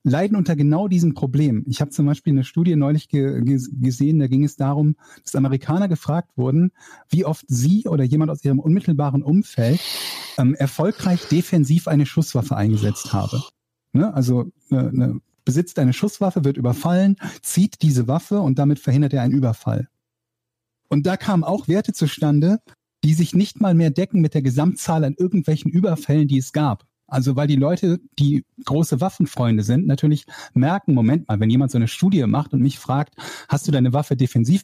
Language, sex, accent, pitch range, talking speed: German, male, German, 125-160 Hz, 170 wpm